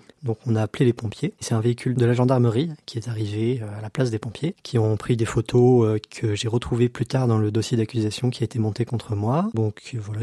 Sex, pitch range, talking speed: male, 110-135 Hz, 245 wpm